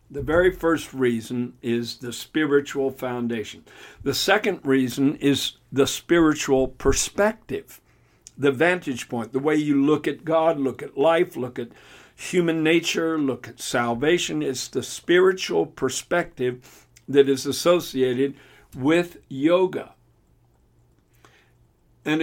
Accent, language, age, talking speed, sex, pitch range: American, English, 60-79, 120 wpm, male, 130-155 Hz